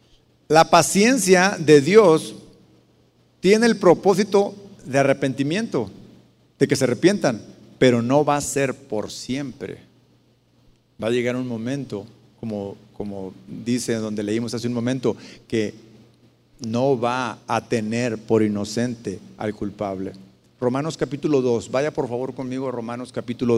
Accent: Mexican